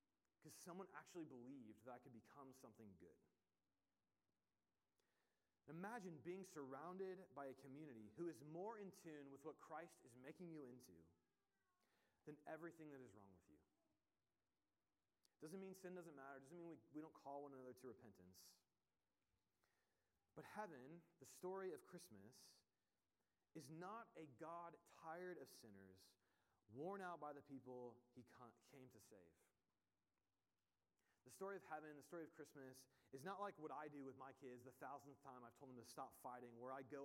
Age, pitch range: 30-49, 120-165 Hz